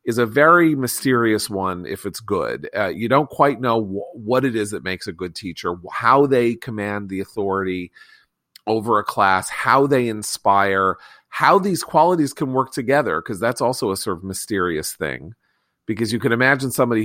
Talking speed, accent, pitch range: 185 wpm, American, 100-135 Hz